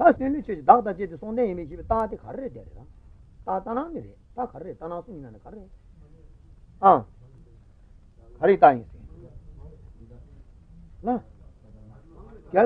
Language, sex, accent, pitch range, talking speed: Italian, male, Indian, 145-220 Hz, 125 wpm